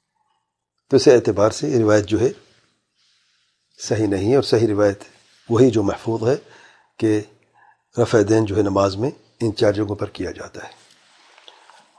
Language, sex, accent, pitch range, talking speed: English, male, Indian, 110-160 Hz, 155 wpm